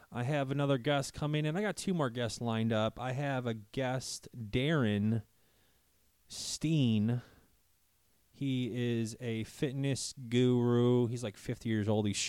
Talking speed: 145 wpm